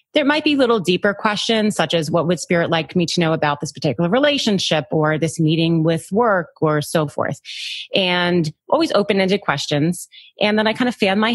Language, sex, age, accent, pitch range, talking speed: English, female, 30-49, American, 160-205 Hz, 205 wpm